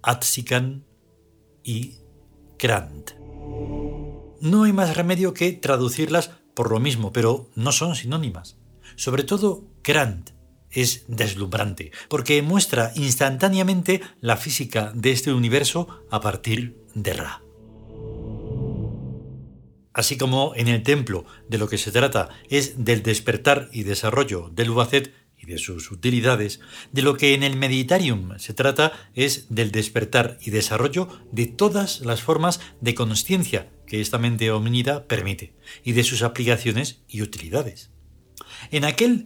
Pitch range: 110-145 Hz